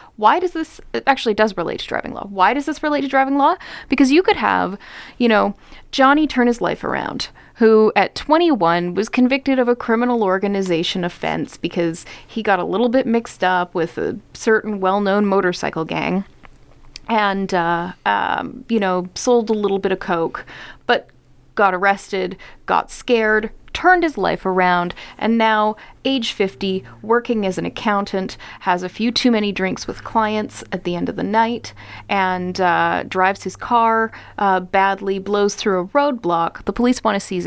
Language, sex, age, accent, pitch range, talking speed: English, female, 30-49, American, 185-235 Hz, 175 wpm